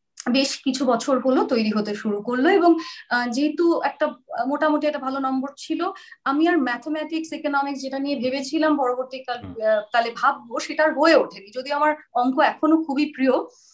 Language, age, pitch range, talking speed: Bengali, 30-49, 225-305 Hz, 150 wpm